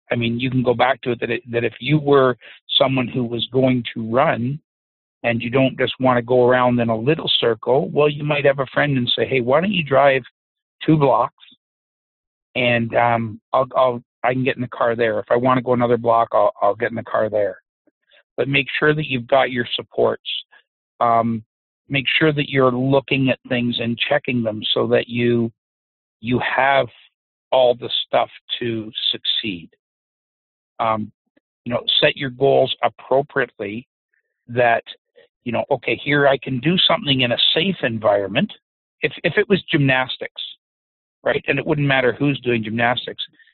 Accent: American